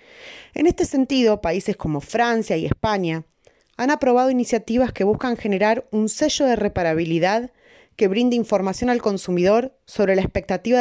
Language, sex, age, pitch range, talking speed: Spanish, female, 20-39, 195-260 Hz, 145 wpm